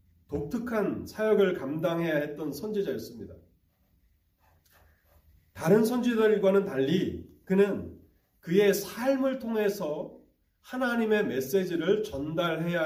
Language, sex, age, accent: Korean, male, 30-49, native